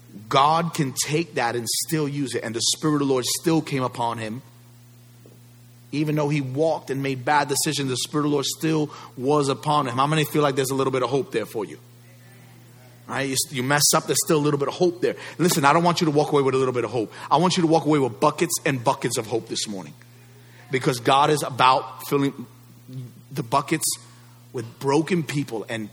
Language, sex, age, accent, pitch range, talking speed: English, male, 30-49, American, 120-150 Hz, 230 wpm